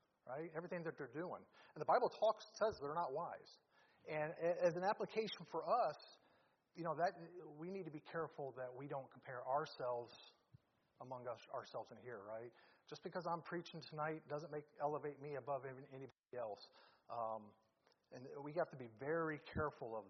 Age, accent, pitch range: 40-59, American, 130-160 Hz